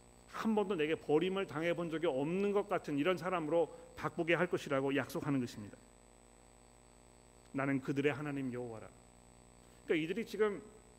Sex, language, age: male, Korean, 40-59